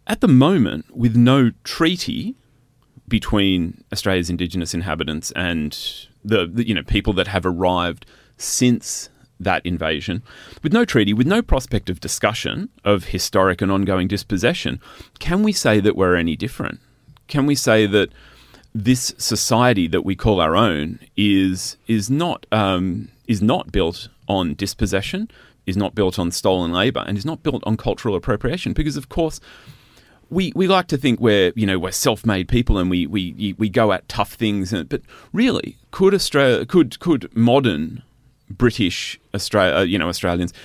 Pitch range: 95-125 Hz